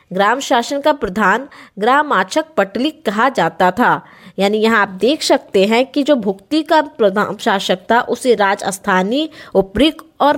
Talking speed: 145 wpm